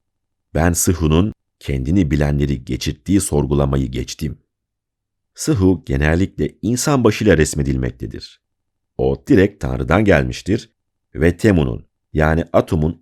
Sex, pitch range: male, 75-100 Hz